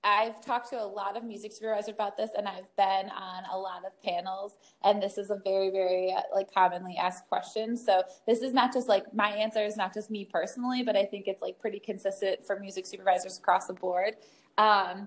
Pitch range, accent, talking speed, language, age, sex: 190-230 Hz, American, 220 wpm, English, 20-39, female